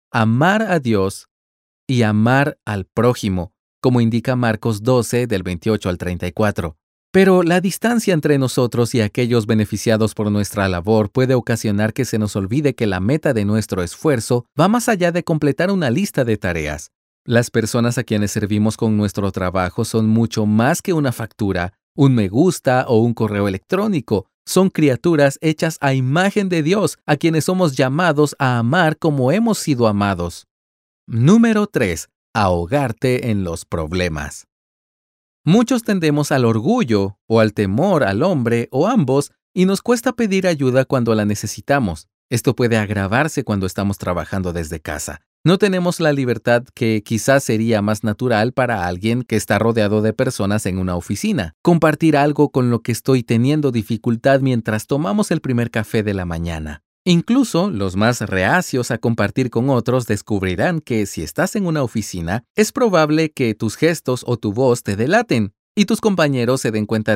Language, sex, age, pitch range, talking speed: Spanish, male, 40-59, 105-145 Hz, 165 wpm